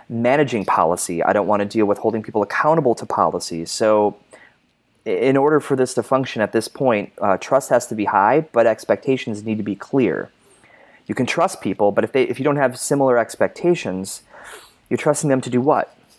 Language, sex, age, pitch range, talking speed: English, male, 20-39, 105-130 Hz, 200 wpm